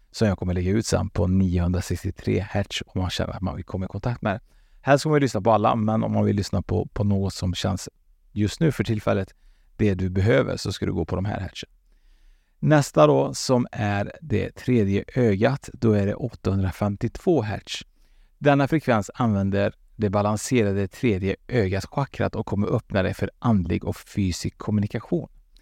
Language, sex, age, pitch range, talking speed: Swedish, male, 30-49, 95-120 Hz, 185 wpm